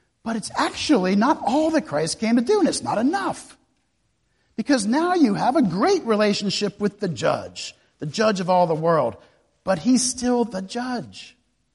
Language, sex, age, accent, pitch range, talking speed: English, male, 50-69, American, 145-220 Hz, 180 wpm